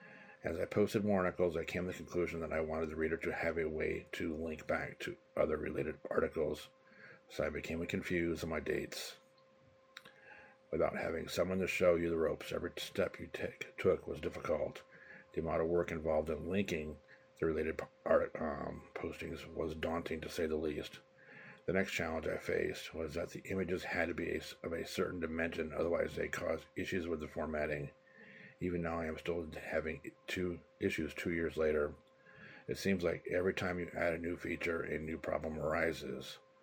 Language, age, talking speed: English, 50-69, 185 wpm